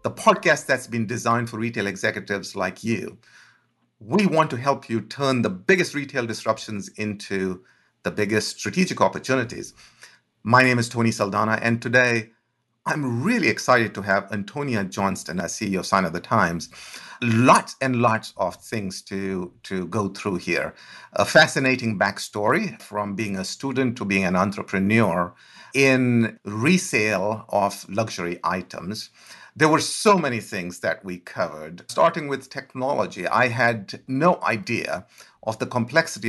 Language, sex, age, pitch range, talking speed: English, male, 50-69, 100-130 Hz, 150 wpm